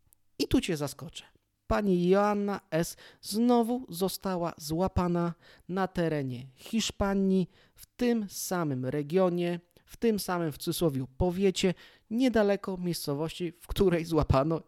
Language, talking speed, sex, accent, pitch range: Polish, 115 wpm, male, native, 145-175 Hz